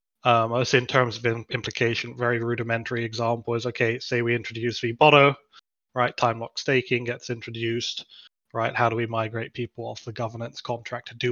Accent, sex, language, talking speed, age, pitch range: British, male, English, 175 wpm, 20-39, 115-125 Hz